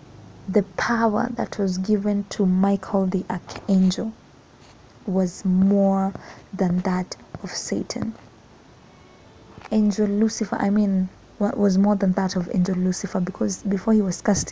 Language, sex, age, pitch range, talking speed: English, female, 20-39, 190-210 Hz, 130 wpm